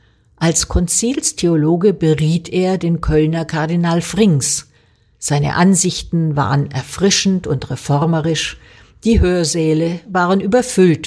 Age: 50-69